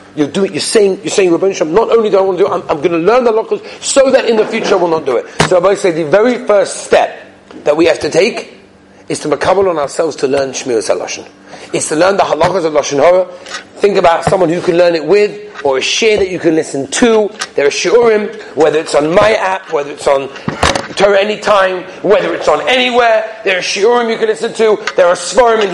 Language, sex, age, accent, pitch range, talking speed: English, male, 40-59, British, 175-235 Hz, 250 wpm